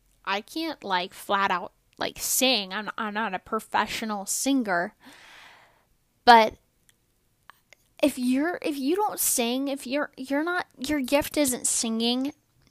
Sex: female